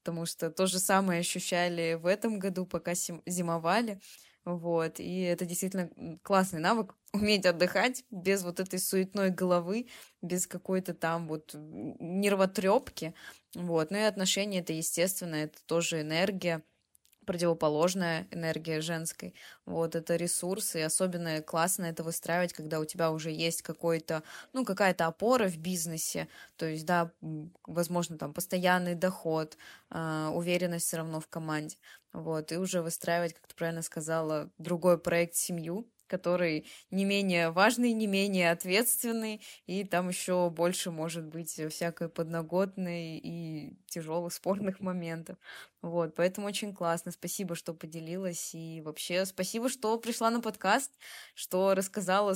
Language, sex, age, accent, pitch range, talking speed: Russian, female, 20-39, native, 165-190 Hz, 135 wpm